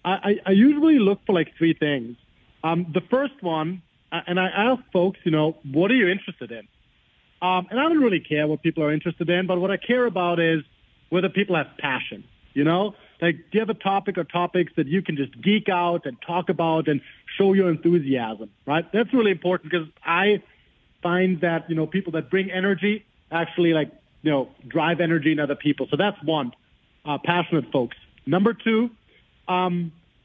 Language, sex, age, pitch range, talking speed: English, male, 40-59, 160-195 Hz, 195 wpm